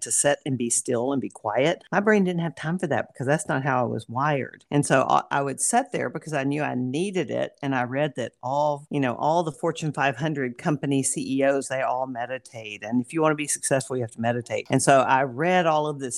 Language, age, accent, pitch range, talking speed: English, 50-69, American, 130-170 Hz, 250 wpm